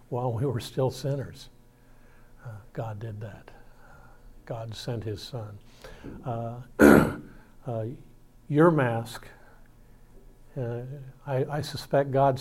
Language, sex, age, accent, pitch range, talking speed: English, male, 60-79, American, 115-130 Hz, 105 wpm